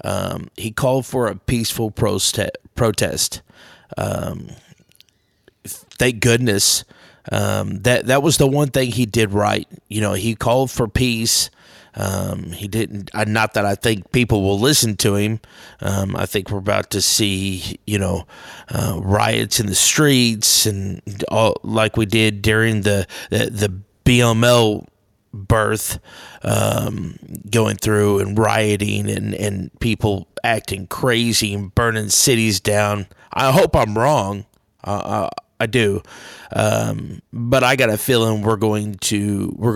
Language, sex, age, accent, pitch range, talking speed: English, male, 30-49, American, 100-115 Hz, 145 wpm